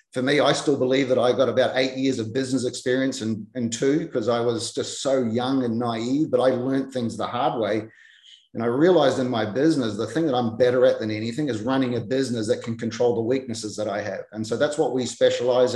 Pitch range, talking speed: 115-145 Hz, 240 wpm